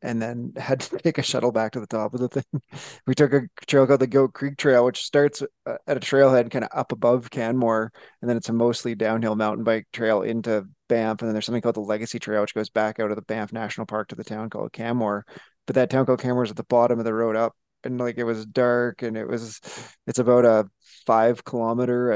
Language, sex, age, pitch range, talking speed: English, male, 20-39, 110-130 Hz, 250 wpm